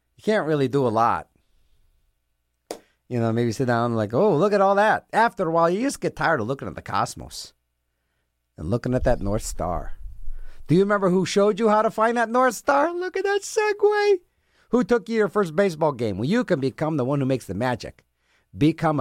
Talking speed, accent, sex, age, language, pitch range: 220 wpm, American, male, 50-69, English, 115-185 Hz